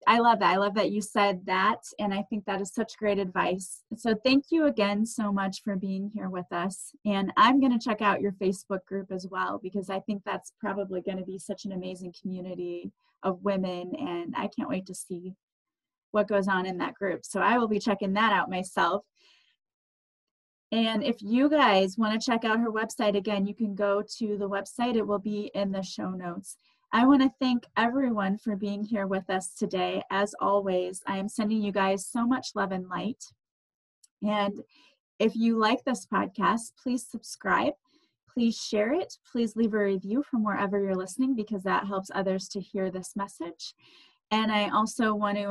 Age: 30-49